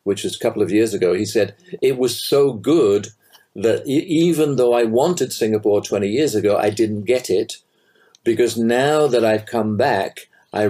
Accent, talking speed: British, 185 wpm